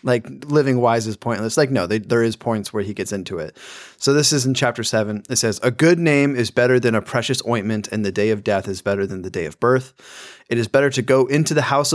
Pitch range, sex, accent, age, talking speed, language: 100-125 Hz, male, American, 20-39, 265 wpm, English